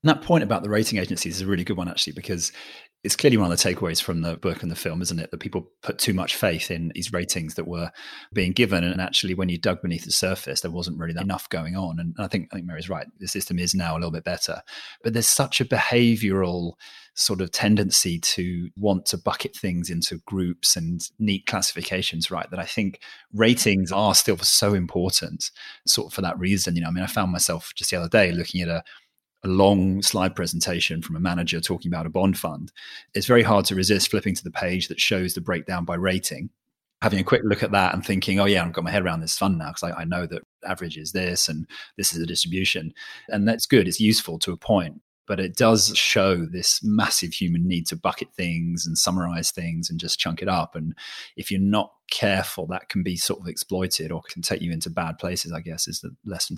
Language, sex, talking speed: English, male, 240 wpm